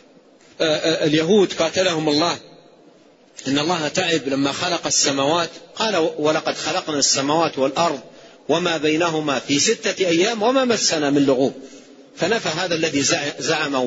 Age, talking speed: 40-59, 115 wpm